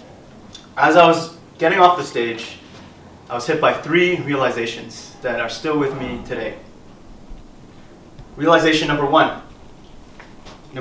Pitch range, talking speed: 130-165 Hz, 130 wpm